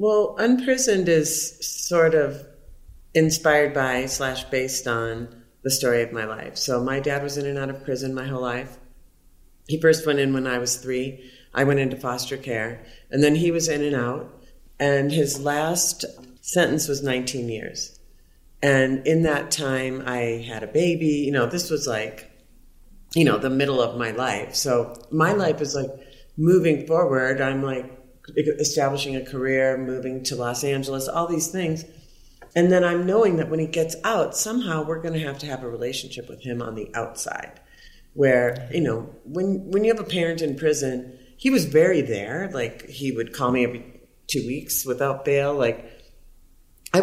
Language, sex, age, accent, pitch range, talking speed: English, female, 40-59, American, 130-165 Hz, 180 wpm